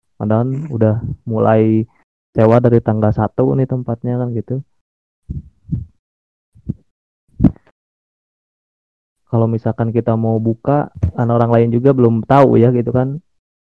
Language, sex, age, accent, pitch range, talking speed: Indonesian, male, 20-39, native, 105-125 Hz, 110 wpm